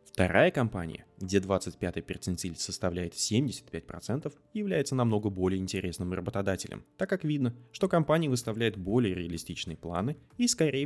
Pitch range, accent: 90-125 Hz, native